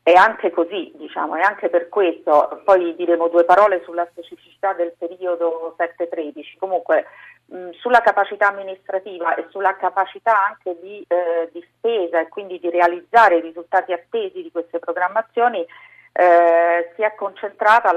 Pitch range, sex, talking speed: 170-210 Hz, female, 145 wpm